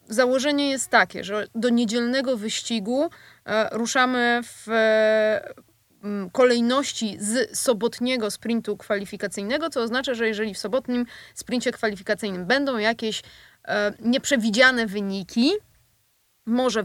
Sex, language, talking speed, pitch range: female, Polish, 95 wpm, 215-255 Hz